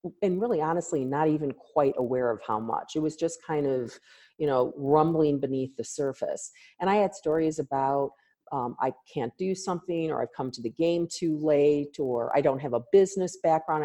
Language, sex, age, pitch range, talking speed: English, female, 40-59, 135-180 Hz, 200 wpm